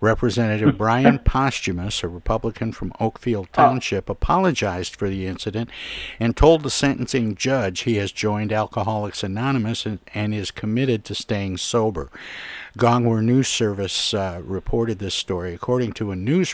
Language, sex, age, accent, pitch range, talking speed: English, male, 60-79, American, 95-115 Hz, 145 wpm